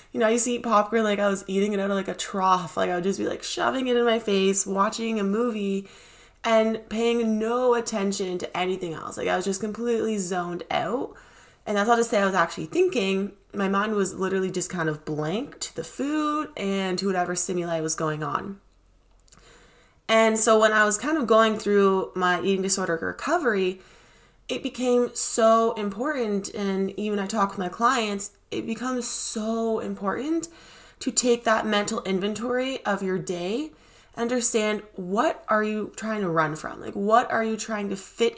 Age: 20-39